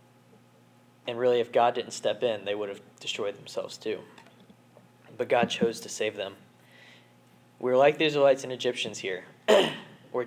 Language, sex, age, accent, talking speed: English, male, 10-29, American, 160 wpm